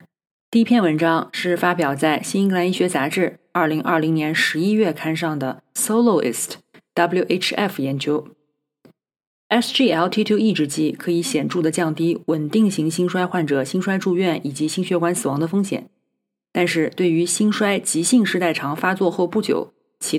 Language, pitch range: Chinese, 155-195 Hz